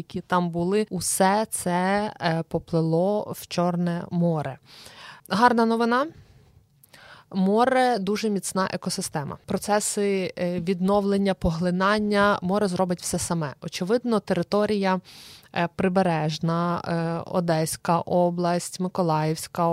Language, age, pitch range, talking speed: Ukrainian, 20-39, 170-205 Hz, 90 wpm